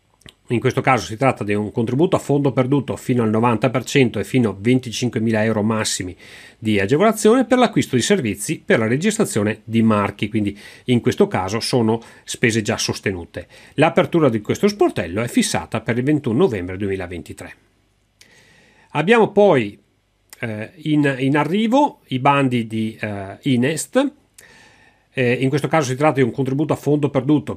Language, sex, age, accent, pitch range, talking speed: Italian, male, 40-59, native, 110-140 Hz, 150 wpm